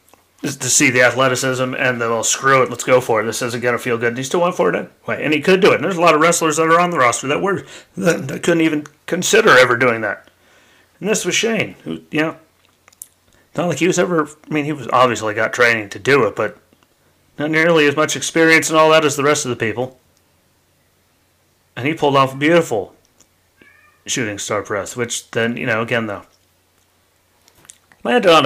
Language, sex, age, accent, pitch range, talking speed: English, male, 30-49, American, 95-150 Hz, 220 wpm